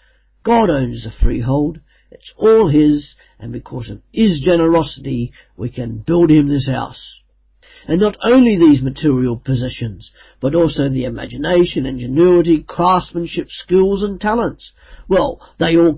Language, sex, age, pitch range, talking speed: English, male, 50-69, 130-180 Hz, 135 wpm